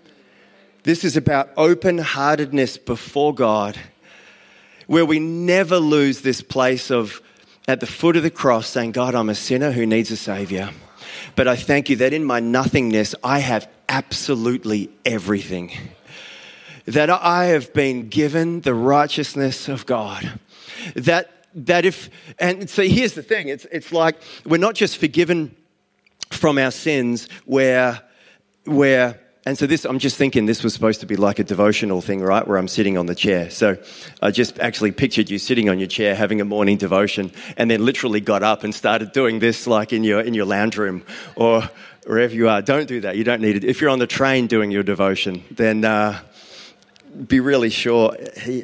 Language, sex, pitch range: English, male, 105-140 Hz